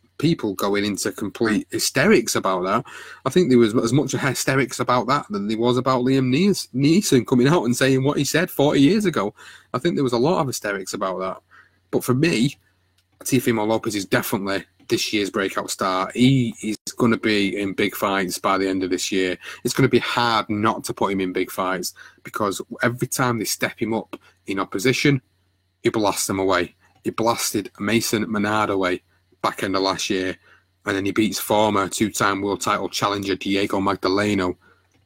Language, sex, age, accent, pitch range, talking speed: English, male, 30-49, British, 95-125 Hz, 195 wpm